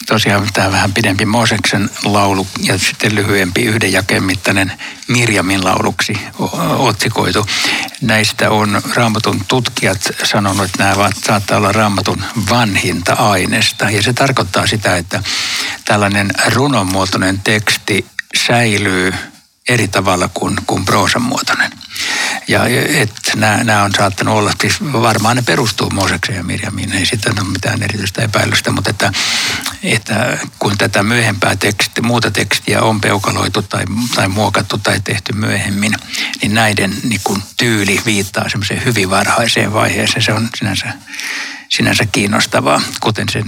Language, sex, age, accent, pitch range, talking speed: Finnish, male, 60-79, native, 100-115 Hz, 125 wpm